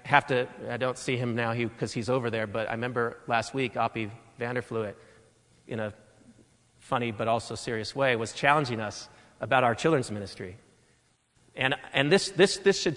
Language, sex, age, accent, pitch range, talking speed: English, male, 40-59, American, 130-215 Hz, 180 wpm